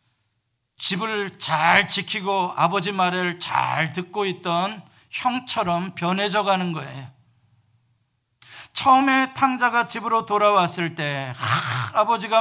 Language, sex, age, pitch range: Korean, male, 50-69, 165-240 Hz